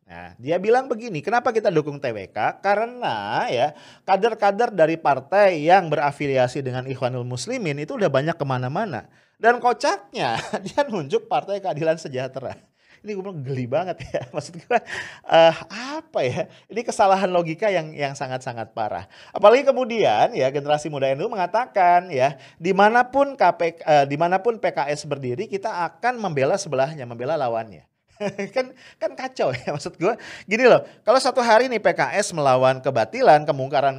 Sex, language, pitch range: male, English, 140-215 Hz